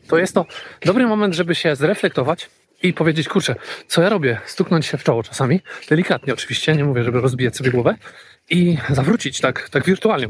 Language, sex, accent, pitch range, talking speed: Polish, male, native, 135-190 Hz, 185 wpm